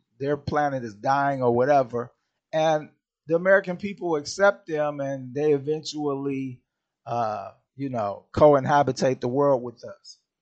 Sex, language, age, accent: male, English, 50-69, American